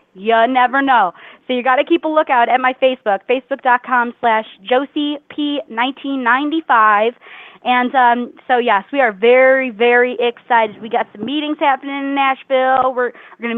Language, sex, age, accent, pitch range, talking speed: English, female, 20-39, American, 215-270 Hz, 155 wpm